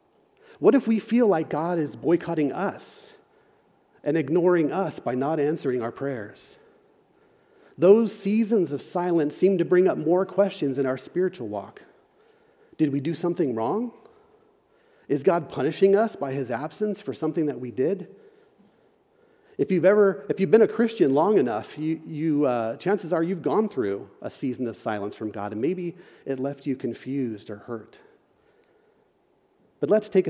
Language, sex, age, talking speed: English, male, 40-59, 165 wpm